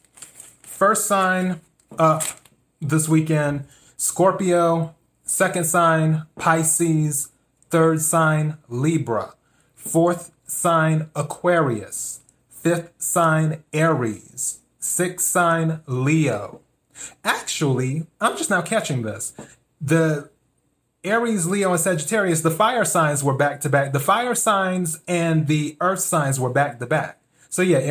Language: English